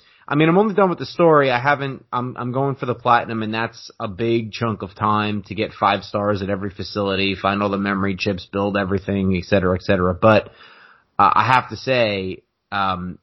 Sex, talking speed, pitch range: male, 220 wpm, 105-130 Hz